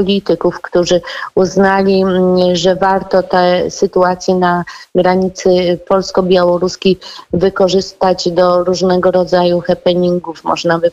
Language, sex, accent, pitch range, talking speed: Polish, female, native, 180-205 Hz, 95 wpm